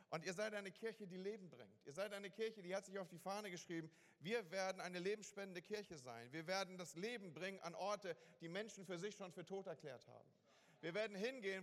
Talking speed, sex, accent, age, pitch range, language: 225 wpm, male, German, 40-59, 170-210 Hz, German